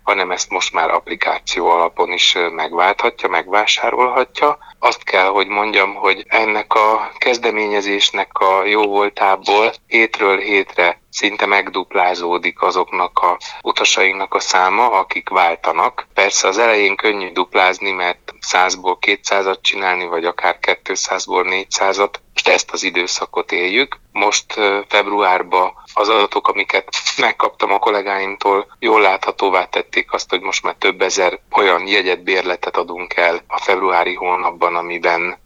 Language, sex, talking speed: Hungarian, male, 125 wpm